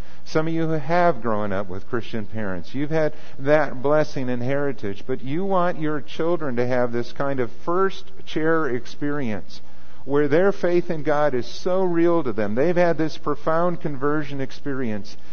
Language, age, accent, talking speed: English, 50-69, American, 175 wpm